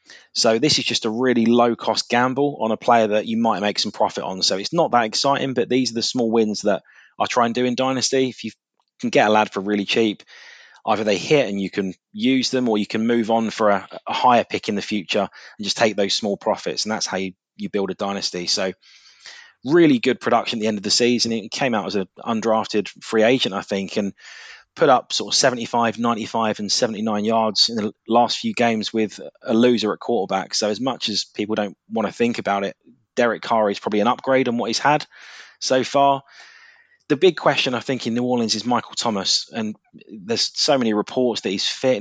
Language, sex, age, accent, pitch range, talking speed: English, male, 20-39, British, 105-125 Hz, 230 wpm